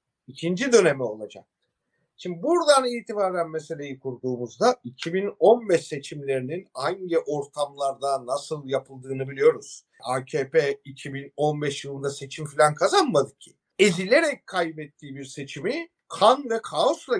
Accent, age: native, 50-69